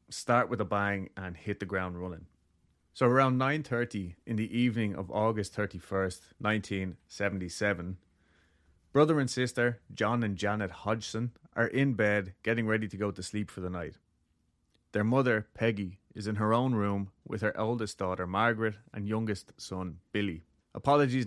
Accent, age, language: Irish, 30-49, English